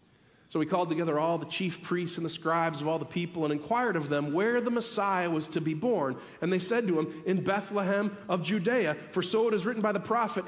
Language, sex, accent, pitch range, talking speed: English, male, American, 140-210 Hz, 245 wpm